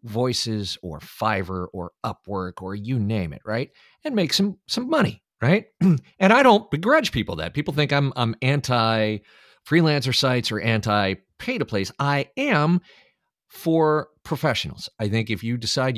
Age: 40-59